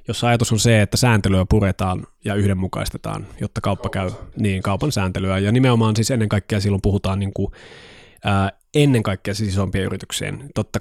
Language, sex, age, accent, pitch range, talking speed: Finnish, male, 20-39, native, 95-120 Hz, 165 wpm